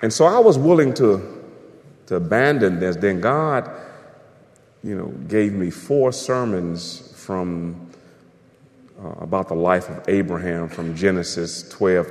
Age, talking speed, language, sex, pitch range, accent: 40-59, 135 wpm, English, male, 85-130 Hz, American